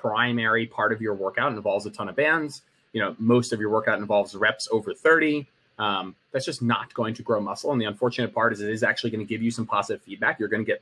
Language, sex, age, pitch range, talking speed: English, male, 30-49, 115-135 Hz, 260 wpm